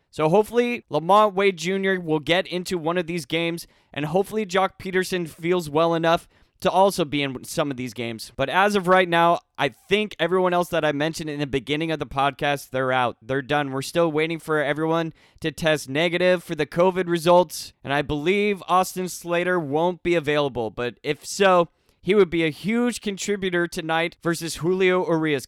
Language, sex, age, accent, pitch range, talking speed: English, male, 20-39, American, 145-185 Hz, 195 wpm